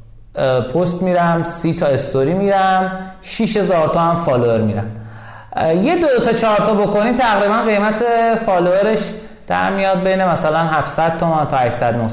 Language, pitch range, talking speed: Persian, 120-180 Hz, 125 wpm